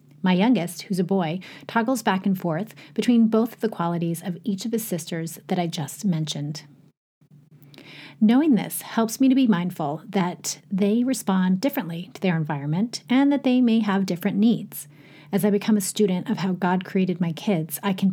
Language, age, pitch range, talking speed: English, 30-49, 170-220 Hz, 190 wpm